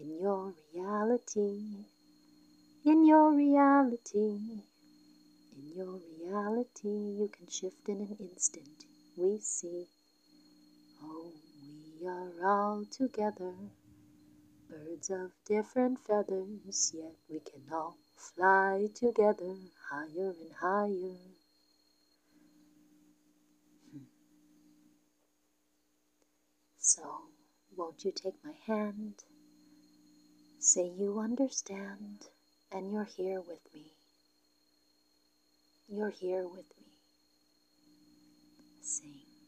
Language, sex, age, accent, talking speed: English, female, 40-59, American, 85 wpm